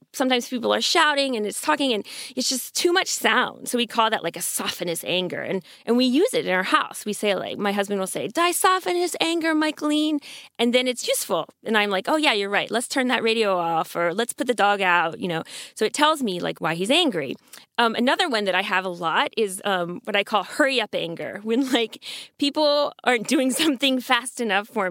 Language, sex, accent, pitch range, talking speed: English, female, American, 200-275 Hz, 235 wpm